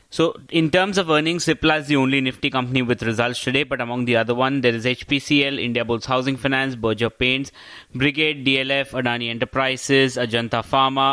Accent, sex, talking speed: Indian, male, 185 wpm